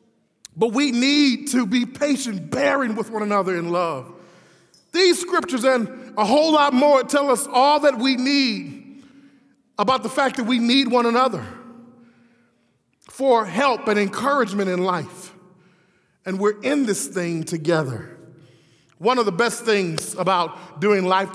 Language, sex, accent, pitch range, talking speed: English, male, American, 180-245 Hz, 150 wpm